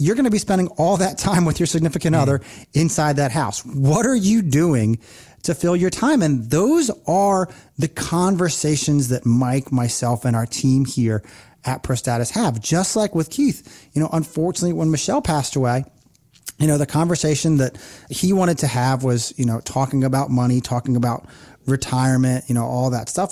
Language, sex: English, male